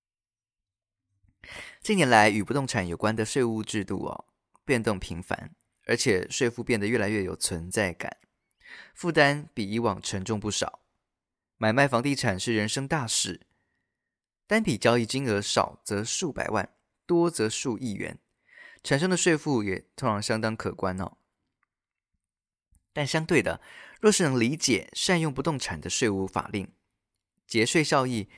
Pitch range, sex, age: 100-130 Hz, male, 20-39